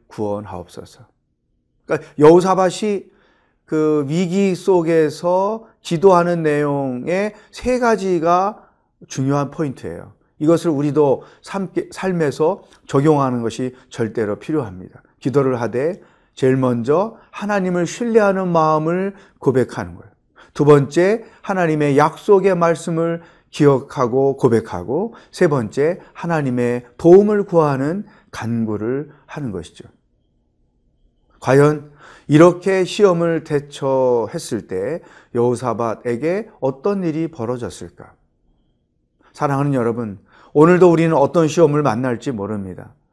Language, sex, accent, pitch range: Korean, male, native, 125-175 Hz